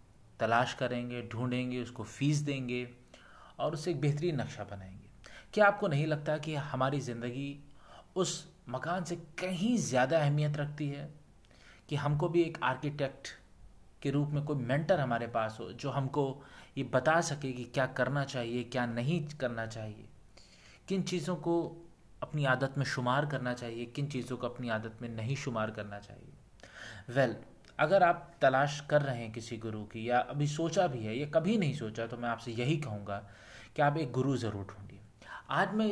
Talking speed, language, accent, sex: 175 wpm, Hindi, native, male